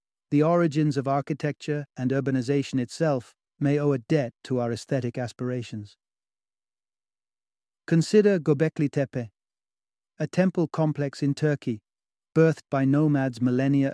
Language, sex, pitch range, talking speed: English, male, 125-155 Hz, 115 wpm